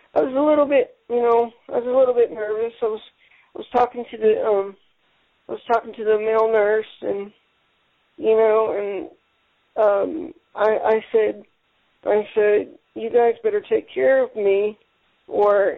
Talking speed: 175 wpm